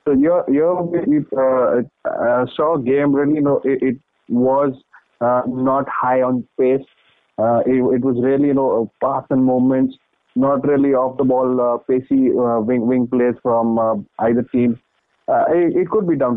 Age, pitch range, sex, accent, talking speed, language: 20-39, 125-145 Hz, male, Indian, 170 wpm, English